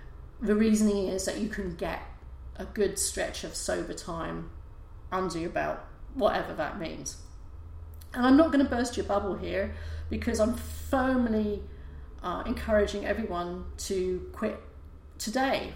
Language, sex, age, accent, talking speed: English, female, 40-59, British, 140 wpm